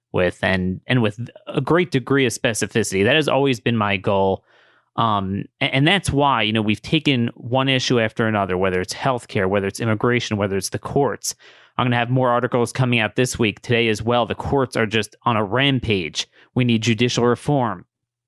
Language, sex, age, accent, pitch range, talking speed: English, male, 30-49, American, 110-135 Hz, 205 wpm